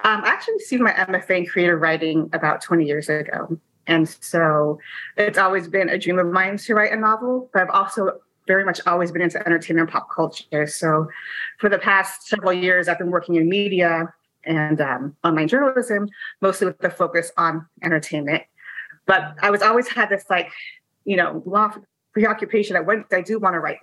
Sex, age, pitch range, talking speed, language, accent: female, 30-49, 165-205 Hz, 195 wpm, English, American